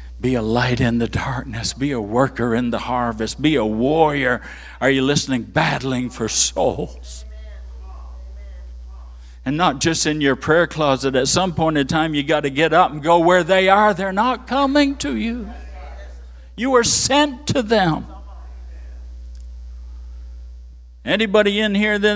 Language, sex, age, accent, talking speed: English, male, 60-79, American, 155 wpm